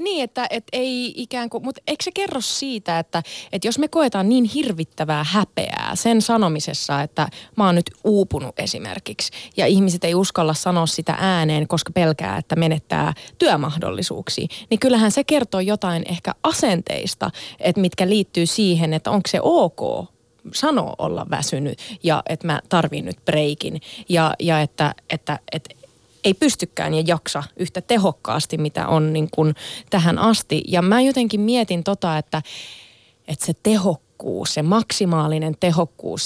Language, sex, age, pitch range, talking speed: Finnish, female, 20-39, 160-220 Hz, 150 wpm